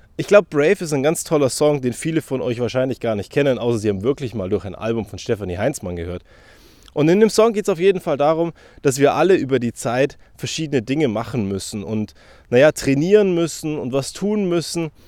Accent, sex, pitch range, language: German, male, 115-170 Hz, German